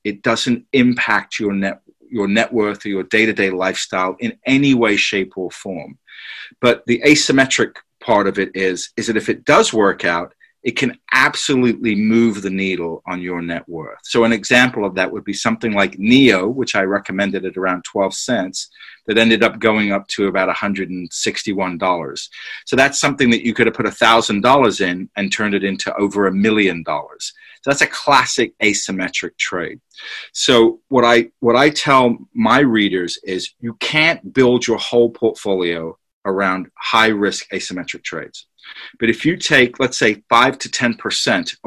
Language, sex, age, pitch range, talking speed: English, male, 40-59, 95-120 Hz, 170 wpm